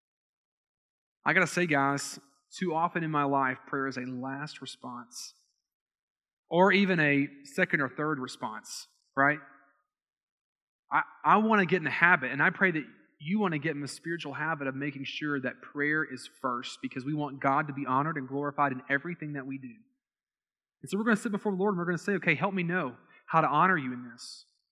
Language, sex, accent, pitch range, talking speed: English, male, American, 135-185 Hz, 215 wpm